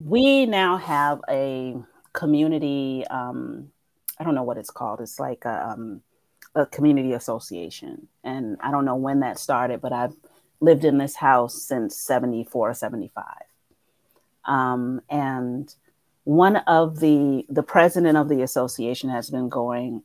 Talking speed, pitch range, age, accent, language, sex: 140 wpm, 130-155 Hz, 30-49, American, English, female